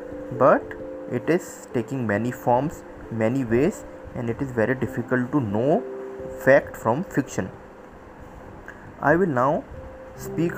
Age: 20-39